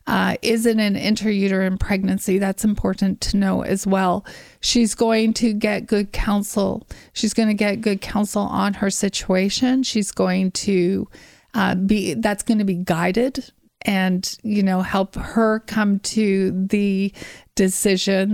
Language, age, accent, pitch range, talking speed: English, 30-49, American, 195-230 Hz, 150 wpm